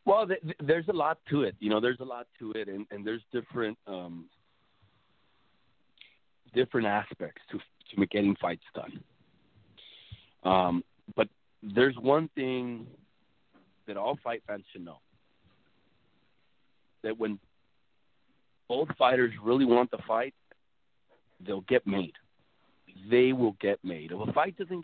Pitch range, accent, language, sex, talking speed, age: 100-130 Hz, American, English, male, 140 wpm, 40-59